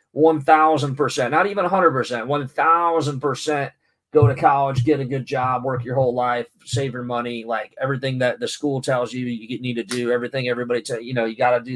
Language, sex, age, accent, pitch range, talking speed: English, male, 30-49, American, 120-150 Hz, 200 wpm